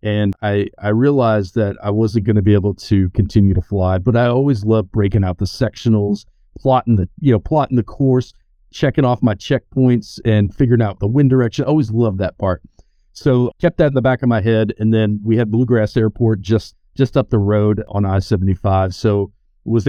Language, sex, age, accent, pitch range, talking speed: English, male, 40-59, American, 100-125 Hz, 210 wpm